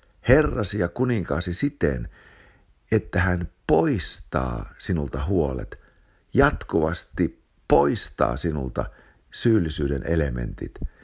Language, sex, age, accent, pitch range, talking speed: English, male, 60-79, Finnish, 70-95 Hz, 75 wpm